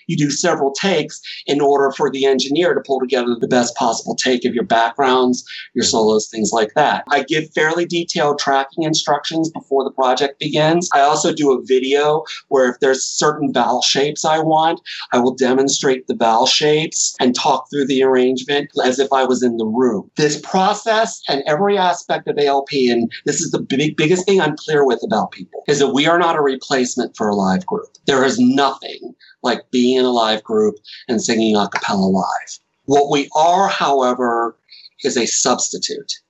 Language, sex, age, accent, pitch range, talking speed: English, male, 40-59, American, 125-155 Hz, 190 wpm